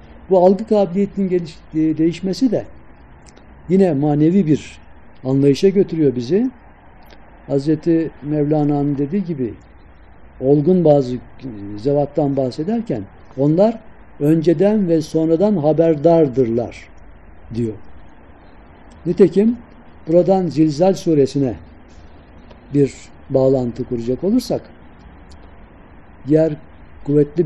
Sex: male